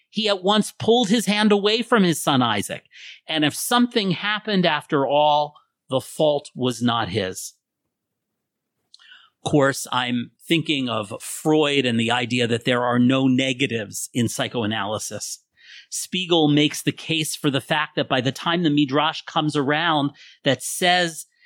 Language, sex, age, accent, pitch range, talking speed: English, male, 40-59, American, 125-170 Hz, 155 wpm